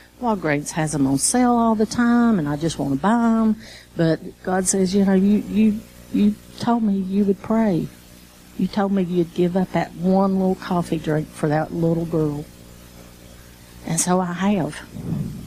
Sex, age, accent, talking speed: female, 50-69, American, 180 wpm